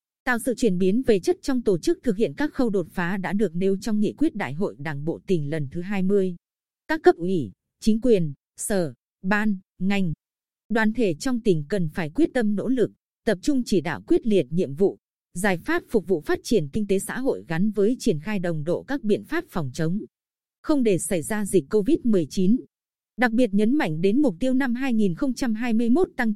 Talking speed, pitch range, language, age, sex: 210 wpm, 180-235 Hz, Vietnamese, 20-39, female